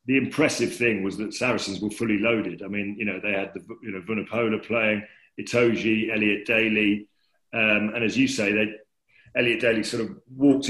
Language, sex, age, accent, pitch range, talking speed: English, male, 40-59, British, 105-120 Hz, 190 wpm